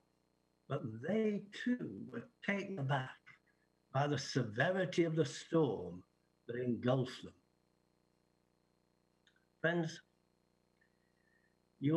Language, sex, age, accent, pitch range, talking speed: English, male, 60-79, British, 125-175 Hz, 85 wpm